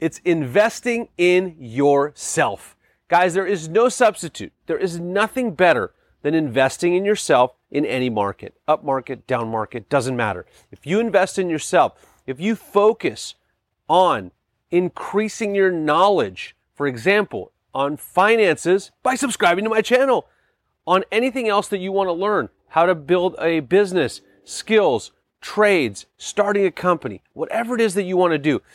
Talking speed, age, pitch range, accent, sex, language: 150 wpm, 30-49, 145-205 Hz, American, male, English